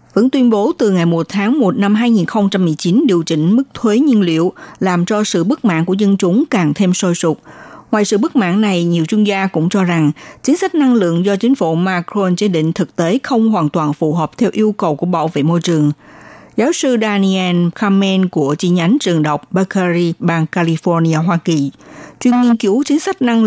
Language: Vietnamese